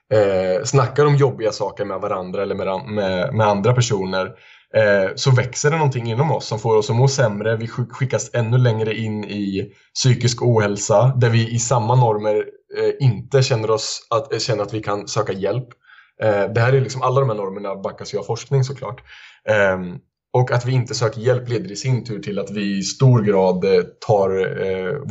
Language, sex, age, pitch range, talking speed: Swedish, male, 20-39, 105-130 Hz, 200 wpm